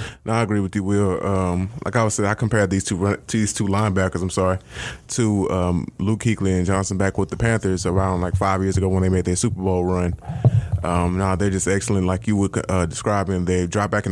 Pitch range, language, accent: 95-110 Hz, English, American